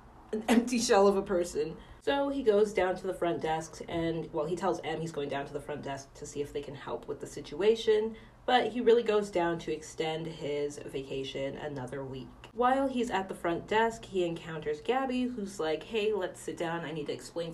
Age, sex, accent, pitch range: 30-49, female, American, 155-220 Hz